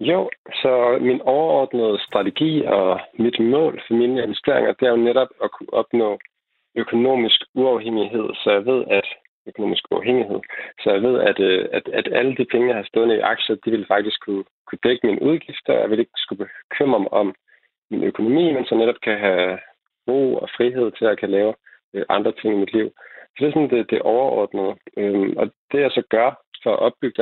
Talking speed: 195 wpm